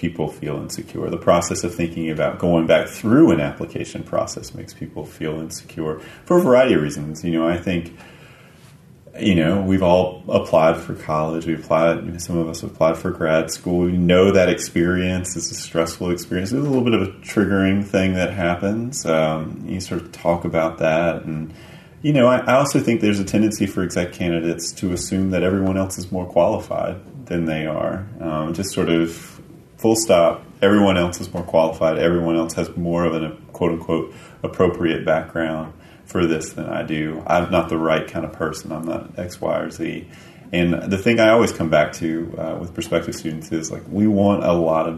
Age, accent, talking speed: 30-49, American, 200 wpm